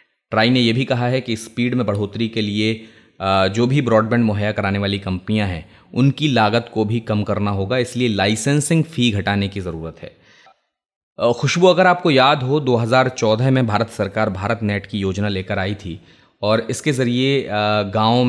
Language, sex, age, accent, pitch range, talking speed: Hindi, male, 20-39, native, 100-120 Hz, 175 wpm